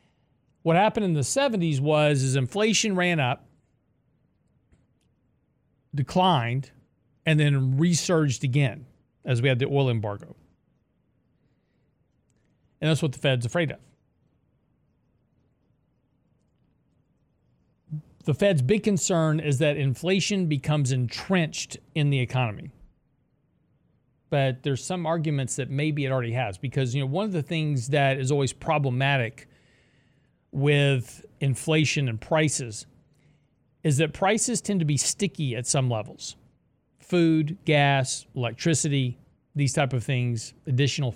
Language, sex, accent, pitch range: English, male, American, 130-155 Hz